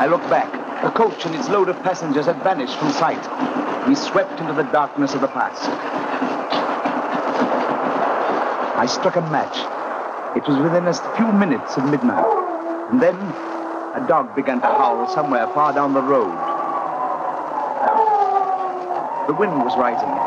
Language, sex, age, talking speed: English, male, 60-79, 150 wpm